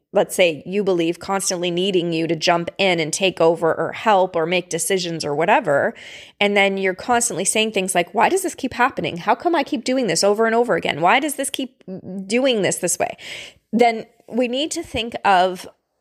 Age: 20-39